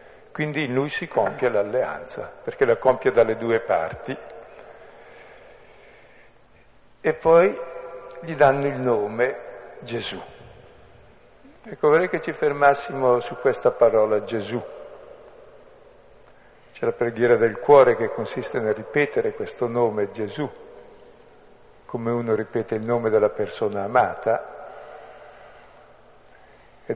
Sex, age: male, 60-79